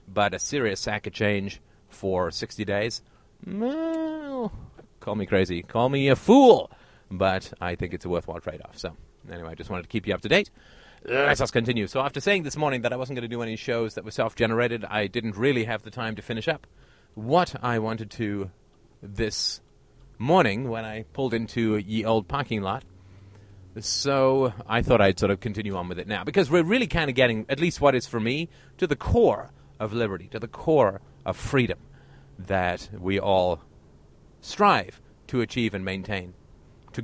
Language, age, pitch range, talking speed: English, 30-49, 100-130 Hz, 195 wpm